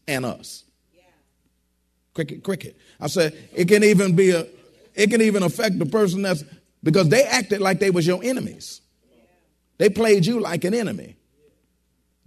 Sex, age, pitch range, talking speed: male, 40-59, 155-205 Hz, 155 wpm